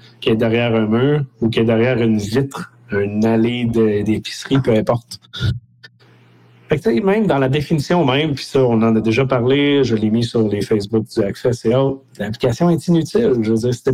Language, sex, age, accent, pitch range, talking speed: French, male, 40-59, Canadian, 115-135 Hz, 200 wpm